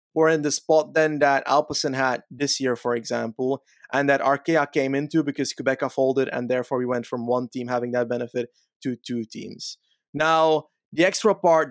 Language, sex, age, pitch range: English, male, 20-39, 140-165 Hz